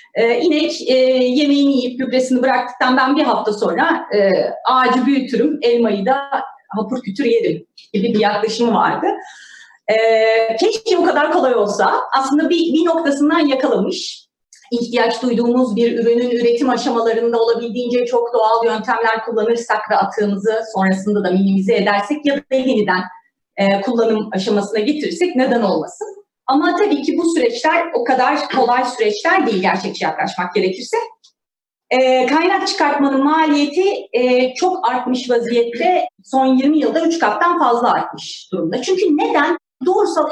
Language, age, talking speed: Turkish, 30-49, 135 wpm